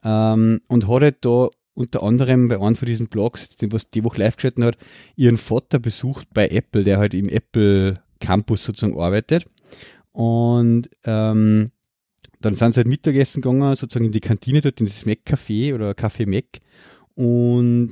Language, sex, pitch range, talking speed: German, male, 110-125 Hz, 175 wpm